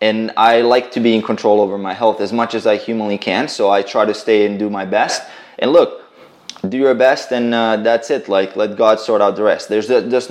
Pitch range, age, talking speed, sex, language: 105-120 Hz, 20-39, 250 wpm, male, Bulgarian